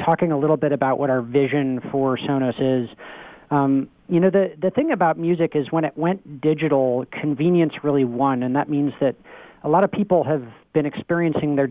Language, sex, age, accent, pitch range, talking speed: English, male, 40-59, American, 135-155 Hz, 200 wpm